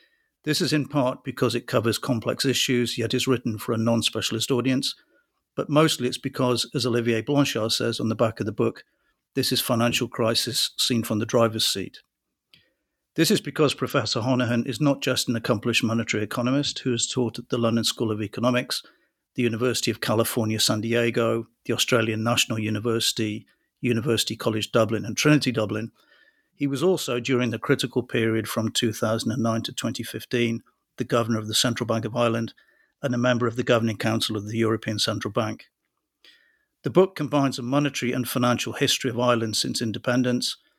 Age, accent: 50-69, British